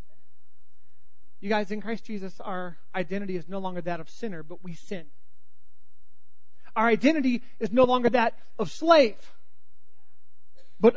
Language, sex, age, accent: English, male, 40-59, American